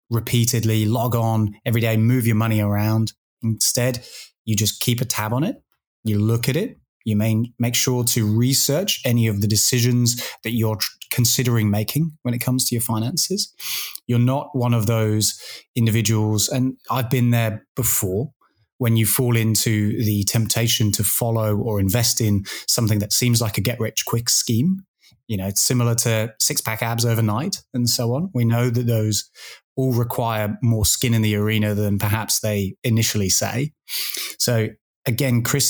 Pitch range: 110-125 Hz